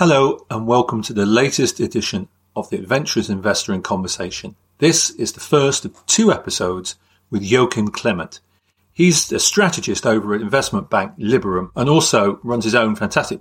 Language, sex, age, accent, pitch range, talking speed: English, male, 40-59, British, 100-145 Hz, 165 wpm